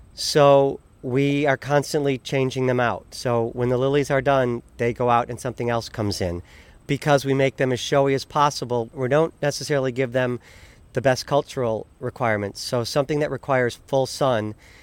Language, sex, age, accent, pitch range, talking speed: English, male, 40-59, American, 110-135 Hz, 180 wpm